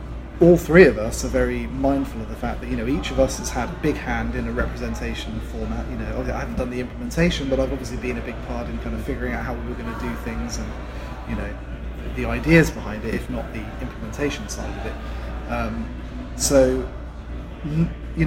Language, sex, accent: English, male, British